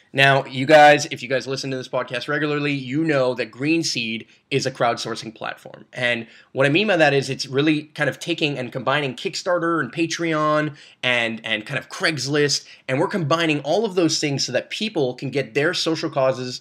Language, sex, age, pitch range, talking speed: English, male, 20-39, 130-160 Hz, 200 wpm